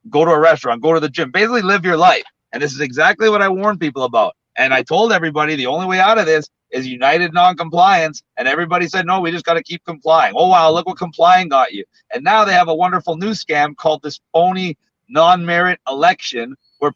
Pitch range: 155-185 Hz